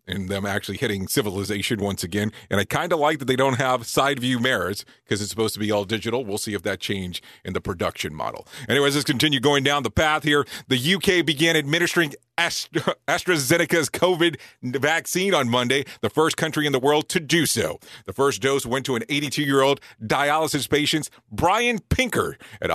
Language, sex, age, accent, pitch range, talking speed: English, male, 40-59, American, 125-165 Hz, 195 wpm